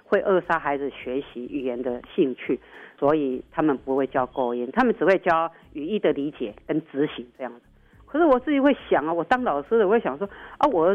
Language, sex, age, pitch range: Chinese, female, 40-59, 135-200 Hz